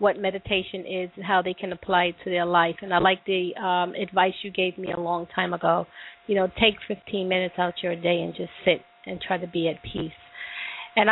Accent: American